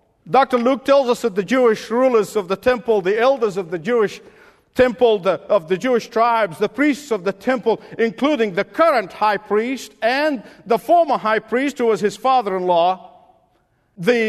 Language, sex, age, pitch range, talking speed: English, male, 50-69, 190-245 Hz, 170 wpm